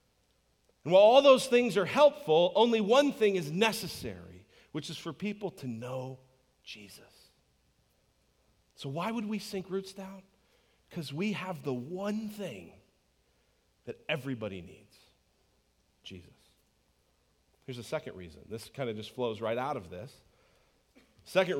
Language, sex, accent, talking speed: English, male, American, 140 wpm